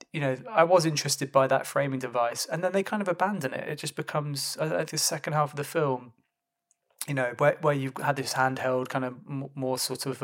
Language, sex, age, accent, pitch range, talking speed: English, male, 20-39, British, 125-145 Hz, 230 wpm